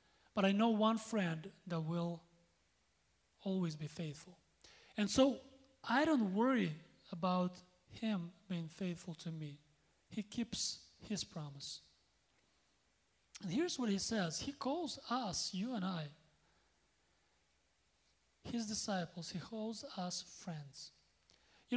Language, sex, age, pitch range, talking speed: English, male, 30-49, 170-225 Hz, 120 wpm